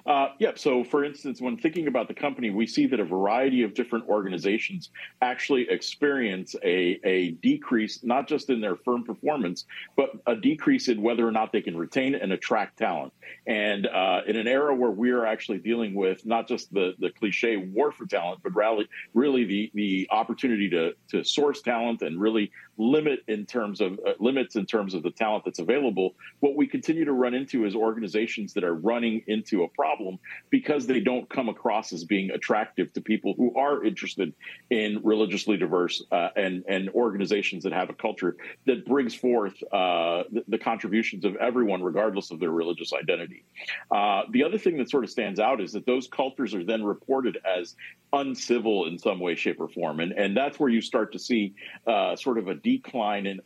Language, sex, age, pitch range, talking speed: English, male, 50-69, 100-135 Hz, 195 wpm